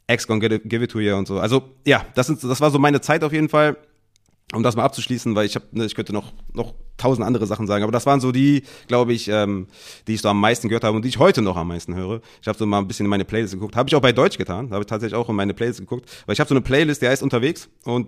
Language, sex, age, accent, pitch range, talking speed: German, male, 30-49, German, 105-130 Hz, 305 wpm